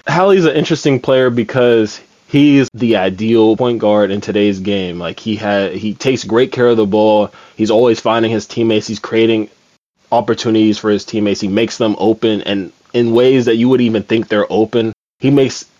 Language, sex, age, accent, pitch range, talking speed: English, male, 20-39, American, 105-125 Hz, 190 wpm